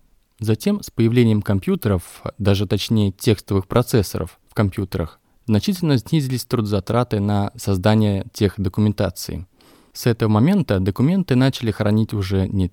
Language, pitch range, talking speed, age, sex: Russian, 100-120 Hz, 120 wpm, 20-39, male